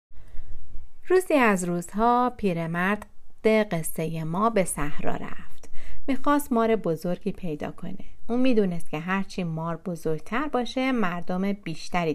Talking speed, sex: 120 wpm, female